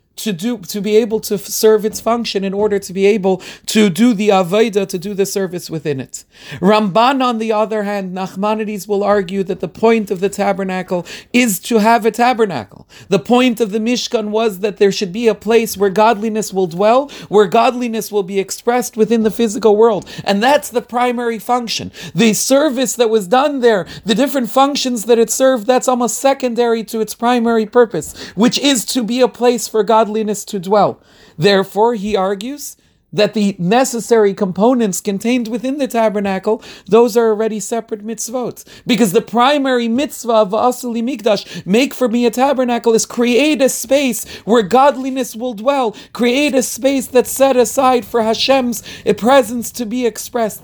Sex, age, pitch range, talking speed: male, 40-59, 205-245 Hz, 180 wpm